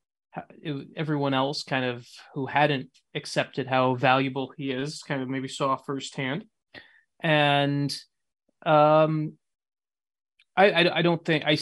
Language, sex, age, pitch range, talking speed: English, male, 20-39, 130-155 Hz, 125 wpm